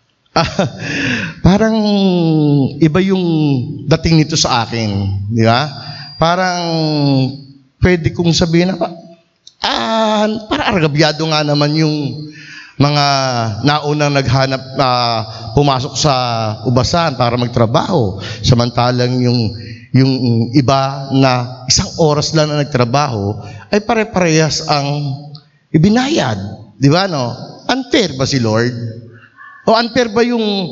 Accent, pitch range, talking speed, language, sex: native, 130-175 Hz, 105 wpm, Filipino, male